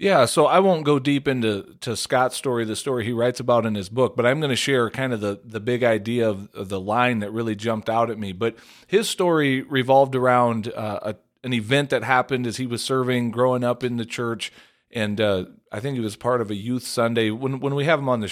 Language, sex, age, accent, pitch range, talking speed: English, male, 40-59, American, 105-135 Hz, 250 wpm